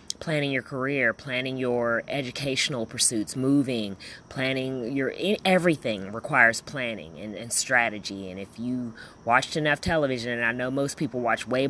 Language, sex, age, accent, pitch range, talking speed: English, female, 30-49, American, 120-155 Hz, 150 wpm